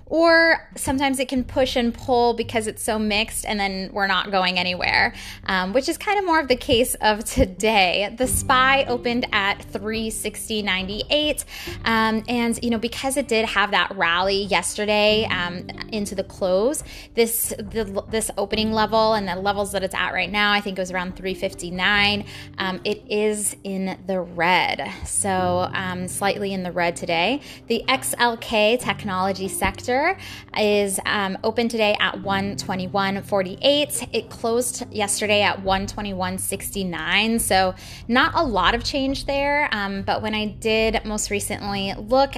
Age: 20-39